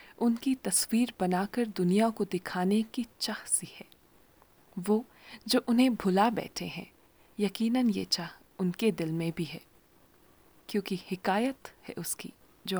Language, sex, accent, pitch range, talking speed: Hindi, female, native, 195-260 Hz, 135 wpm